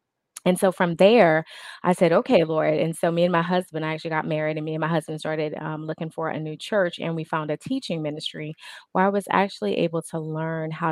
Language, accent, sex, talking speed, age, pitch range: English, American, female, 240 wpm, 20-39, 155-175 Hz